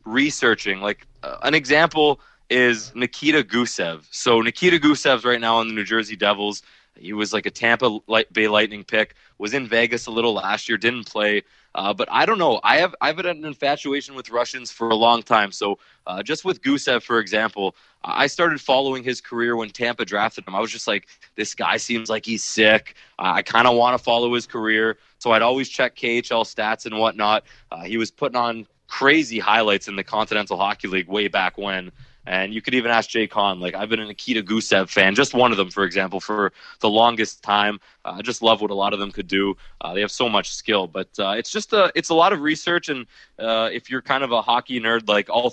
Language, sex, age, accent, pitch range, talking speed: English, male, 20-39, American, 105-125 Hz, 225 wpm